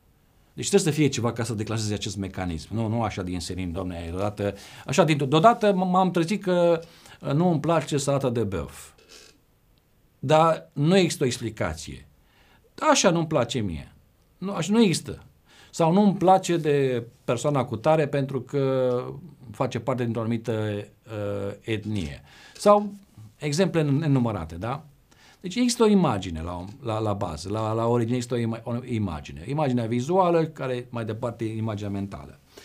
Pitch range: 110-165 Hz